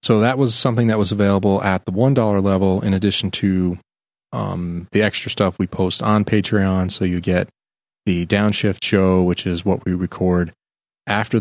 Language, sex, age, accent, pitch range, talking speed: English, male, 20-39, American, 95-110 Hz, 185 wpm